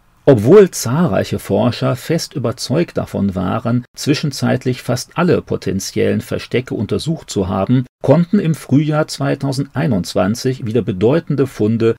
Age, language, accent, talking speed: 40-59, German, German, 110 wpm